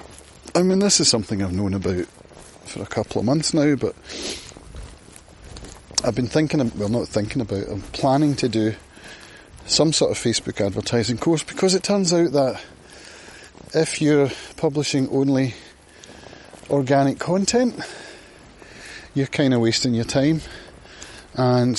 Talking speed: 140 wpm